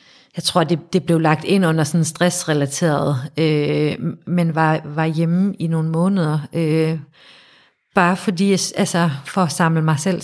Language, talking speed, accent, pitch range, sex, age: Danish, 160 wpm, native, 155-180 Hz, female, 30-49